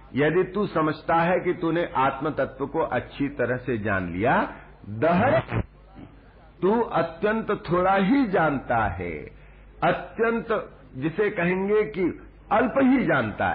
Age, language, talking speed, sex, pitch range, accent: 60-79, Hindi, 135 wpm, male, 120-165 Hz, native